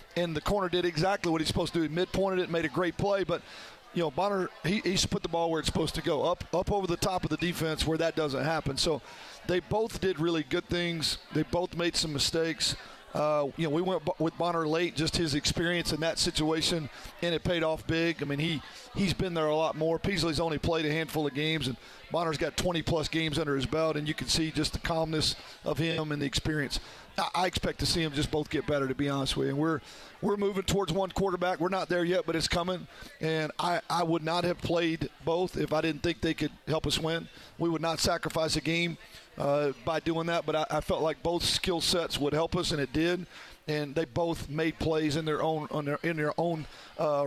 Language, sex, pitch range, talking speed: English, male, 155-175 Hz, 245 wpm